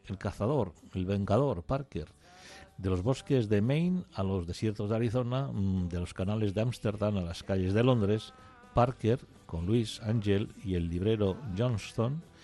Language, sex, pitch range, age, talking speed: Spanish, male, 95-115 Hz, 60-79, 160 wpm